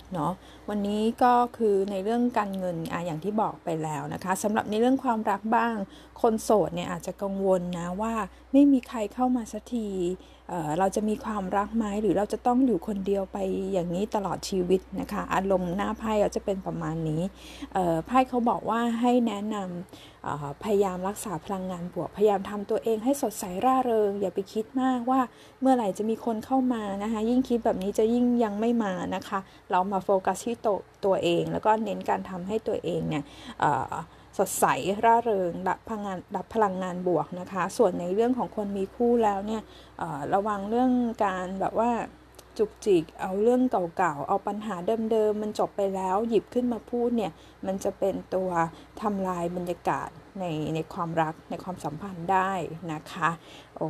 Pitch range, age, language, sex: 185-225 Hz, 20-39, Thai, female